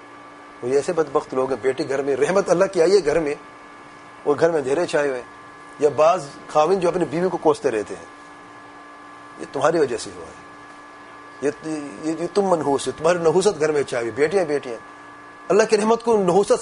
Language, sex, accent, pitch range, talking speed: English, male, Indian, 130-205 Hz, 195 wpm